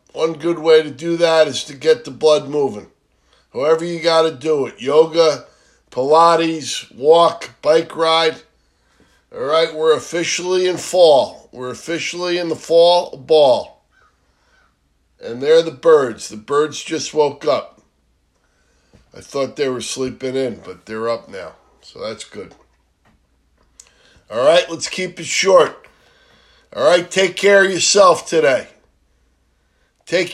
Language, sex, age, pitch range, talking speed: English, male, 50-69, 130-185 Hz, 140 wpm